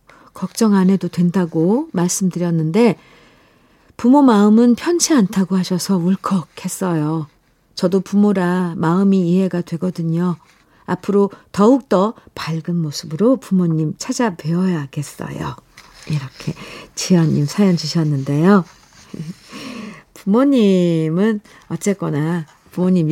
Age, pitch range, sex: 50-69, 160-205 Hz, female